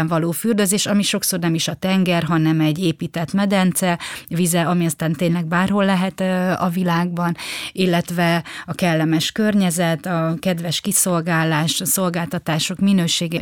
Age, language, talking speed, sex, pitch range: 30-49, Hungarian, 135 wpm, female, 165-185 Hz